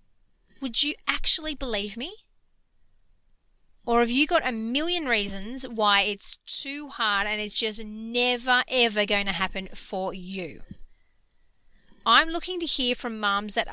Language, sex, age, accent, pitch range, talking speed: English, female, 30-49, Australian, 200-260 Hz, 145 wpm